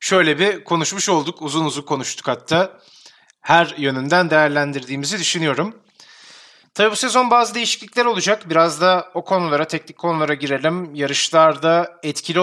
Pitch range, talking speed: 155-185 Hz, 130 wpm